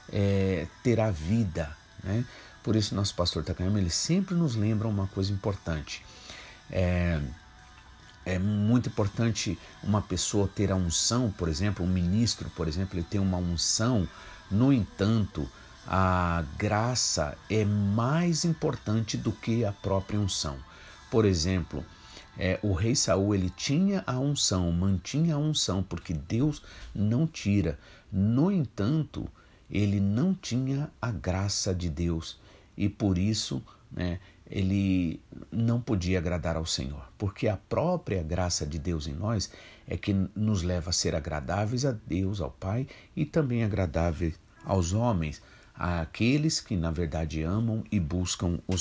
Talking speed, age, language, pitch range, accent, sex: 145 wpm, 50-69, Portuguese, 85-110 Hz, Brazilian, male